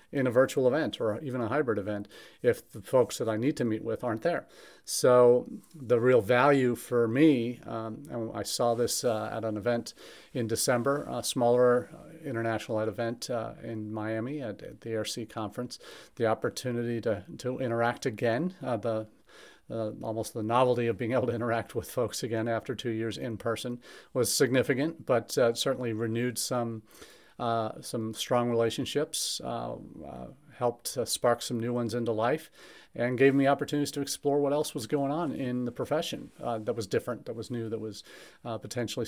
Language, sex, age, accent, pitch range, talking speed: English, male, 40-59, American, 115-130 Hz, 185 wpm